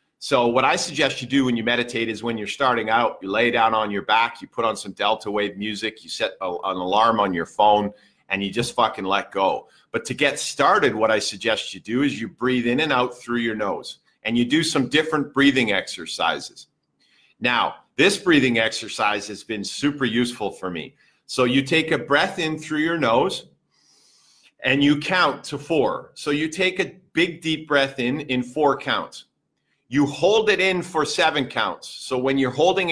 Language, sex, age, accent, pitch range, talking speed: English, male, 50-69, American, 120-150 Hz, 200 wpm